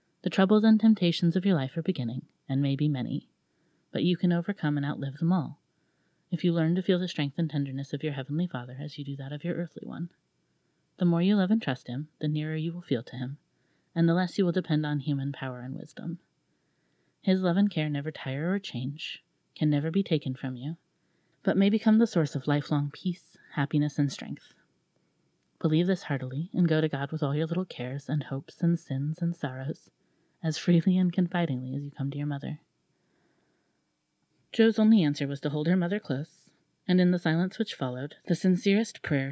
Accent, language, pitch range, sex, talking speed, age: American, English, 140-175 Hz, female, 210 wpm, 30-49